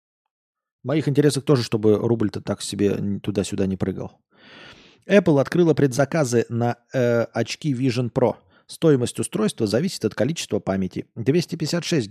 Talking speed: 130 wpm